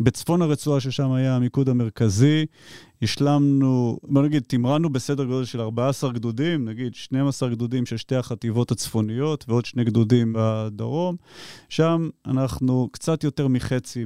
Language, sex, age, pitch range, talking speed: Hebrew, male, 30-49, 115-140 Hz, 130 wpm